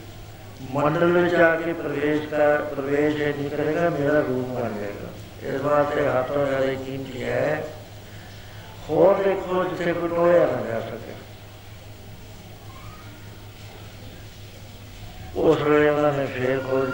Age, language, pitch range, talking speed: 60-79, Punjabi, 105-150 Hz, 110 wpm